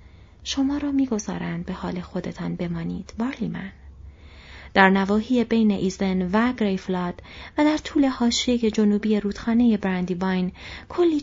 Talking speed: 125 wpm